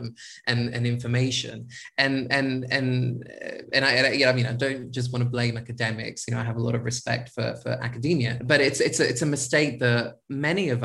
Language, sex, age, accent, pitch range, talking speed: English, male, 20-39, British, 120-135 Hz, 230 wpm